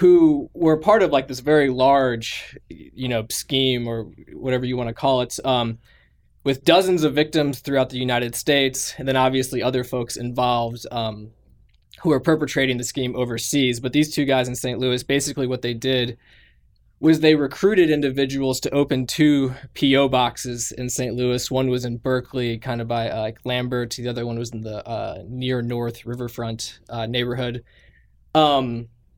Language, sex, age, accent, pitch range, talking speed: English, male, 20-39, American, 120-140 Hz, 175 wpm